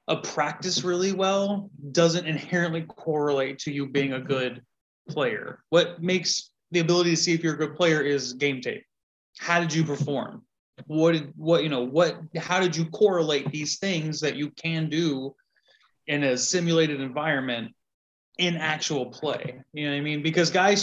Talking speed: 175 wpm